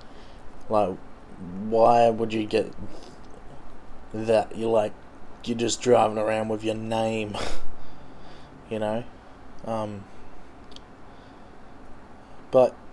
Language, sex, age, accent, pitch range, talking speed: English, male, 20-39, Australian, 105-125 Hz, 90 wpm